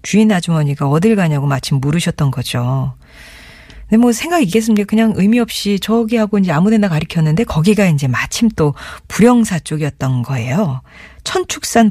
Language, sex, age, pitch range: Korean, female, 40-59, 145-210 Hz